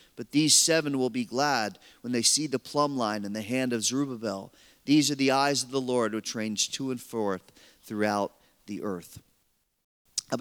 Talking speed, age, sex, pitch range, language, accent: 190 wpm, 40-59, male, 130-180 Hz, English, American